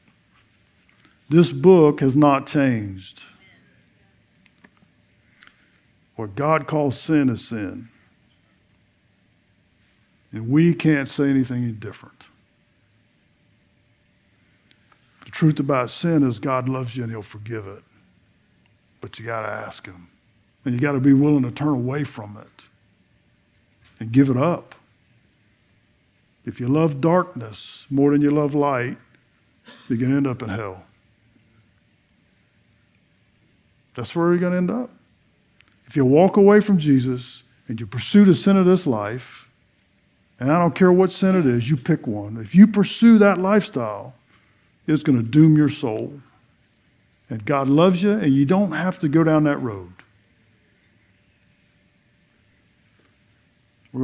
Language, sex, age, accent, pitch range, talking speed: English, male, 50-69, American, 110-145 Hz, 135 wpm